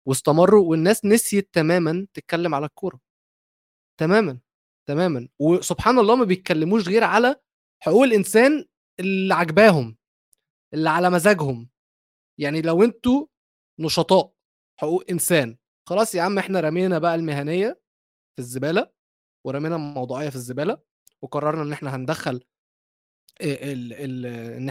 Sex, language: male, Arabic